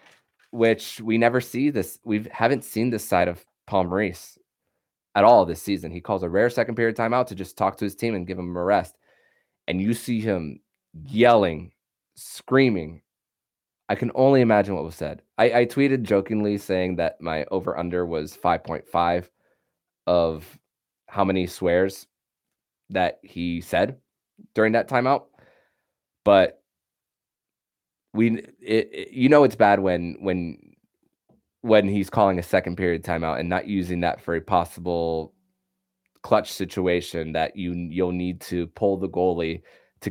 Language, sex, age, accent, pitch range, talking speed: English, male, 20-39, American, 85-115 Hz, 155 wpm